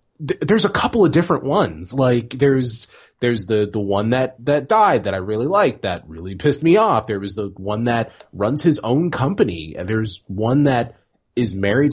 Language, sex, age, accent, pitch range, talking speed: English, male, 30-49, American, 95-140 Hz, 195 wpm